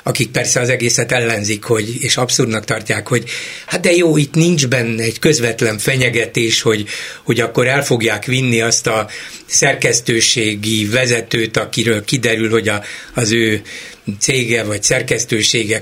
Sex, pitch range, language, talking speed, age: male, 115-155 Hz, Hungarian, 135 wpm, 60-79